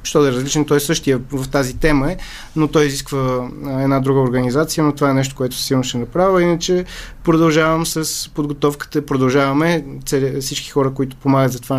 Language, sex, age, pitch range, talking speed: Bulgarian, male, 20-39, 130-155 Hz, 190 wpm